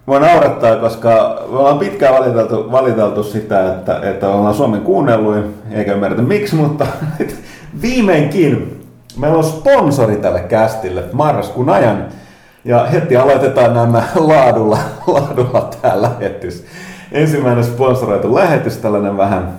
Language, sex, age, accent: Finnish, male, 30-49, native